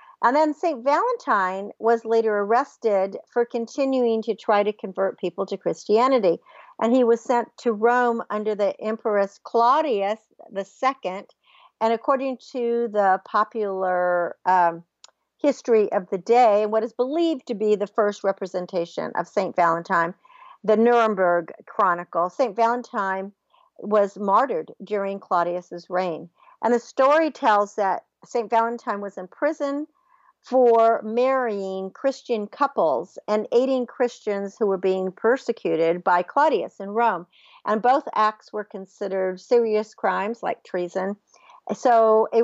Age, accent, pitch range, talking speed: 50-69, American, 195-245 Hz, 135 wpm